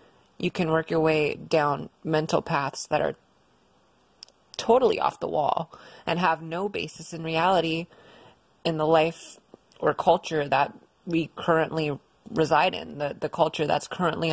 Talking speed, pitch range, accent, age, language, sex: 145 wpm, 155-185 Hz, American, 20-39, English, female